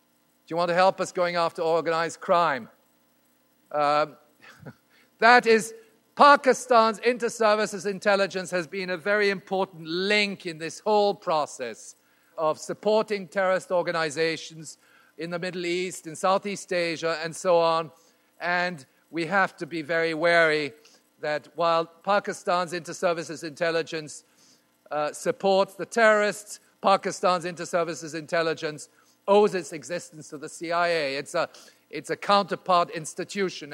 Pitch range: 150-185 Hz